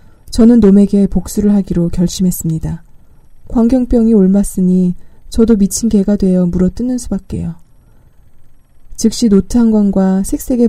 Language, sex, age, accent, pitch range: Korean, female, 20-39, native, 175-215 Hz